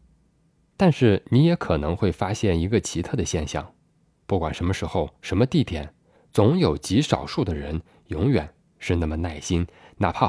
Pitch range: 85-120 Hz